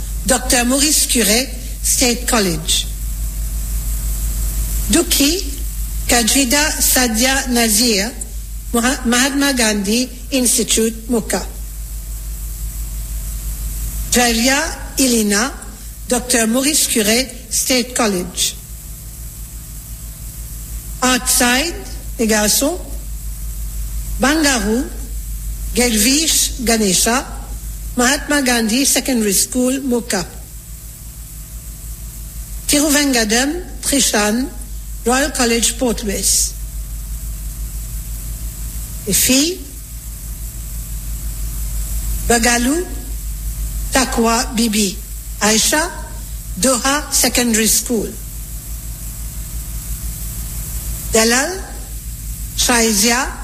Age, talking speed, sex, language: 60-79, 50 wpm, female, English